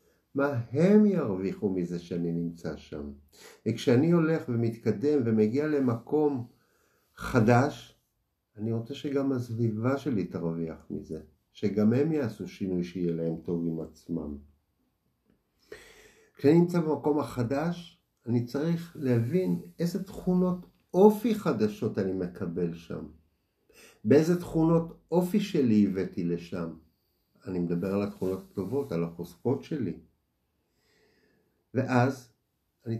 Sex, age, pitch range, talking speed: male, 50-69, 90-150 Hz, 105 wpm